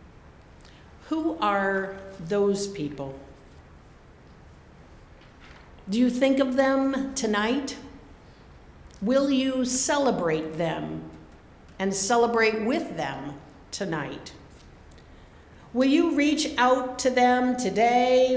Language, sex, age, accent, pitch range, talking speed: English, female, 50-69, American, 180-260 Hz, 85 wpm